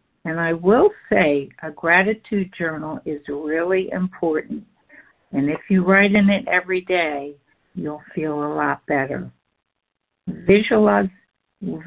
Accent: American